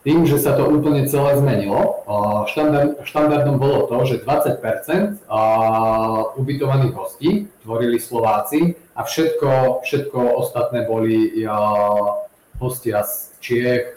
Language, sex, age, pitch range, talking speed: Czech, male, 30-49, 115-145 Hz, 105 wpm